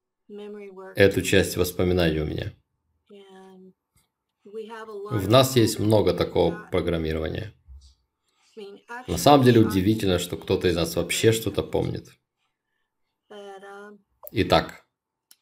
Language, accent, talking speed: Russian, native, 90 wpm